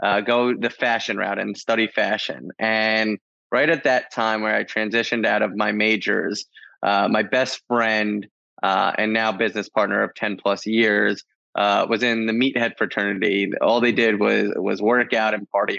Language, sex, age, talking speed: English, male, 20-39, 180 wpm